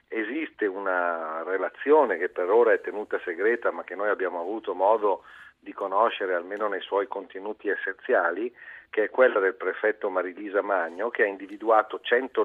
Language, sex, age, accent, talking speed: Italian, male, 50-69, native, 160 wpm